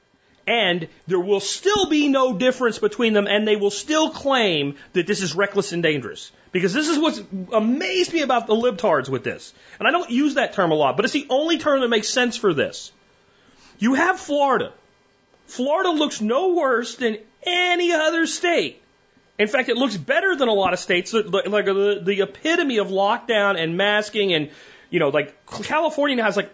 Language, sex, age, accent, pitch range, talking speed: English, male, 30-49, American, 175-255 Hz, 190 wpm